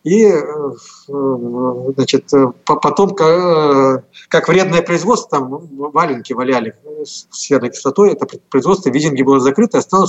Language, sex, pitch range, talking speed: Russian, male, 130-180 Hz, 115 wpm